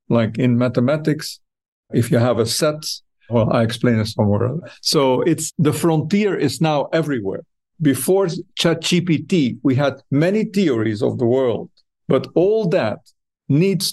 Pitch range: 125-160 Hz